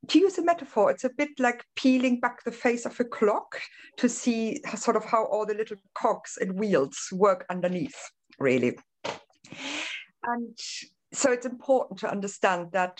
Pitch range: 180-235 Hz